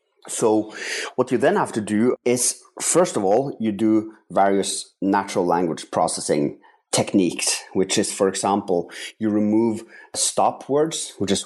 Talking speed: 145 wpm